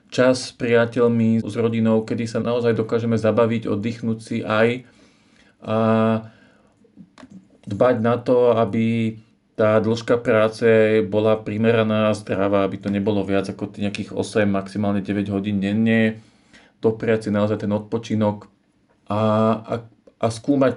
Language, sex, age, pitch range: Slovak, male, 40-59, 110-120 Hz